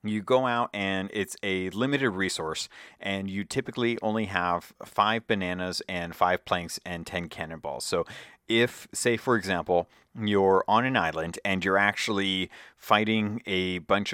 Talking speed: 155 wpm